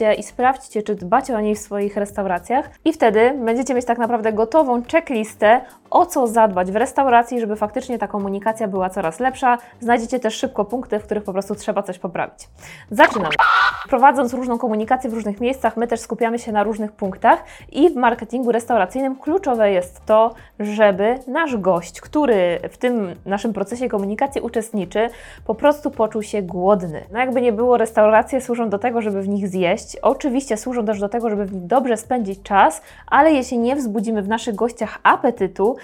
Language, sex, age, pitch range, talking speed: Polish, female, 20-39, 205-245 Hz, 175 wpm